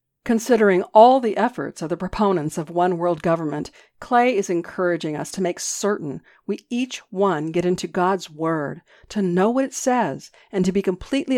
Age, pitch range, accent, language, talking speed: 50-69, 165-230 Hz, American, English, 180 wpm